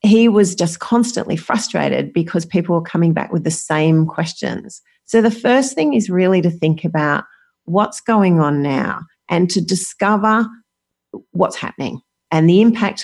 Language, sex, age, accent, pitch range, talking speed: English, female, 40-59, Australian, 165-225 Hz, 160 wpm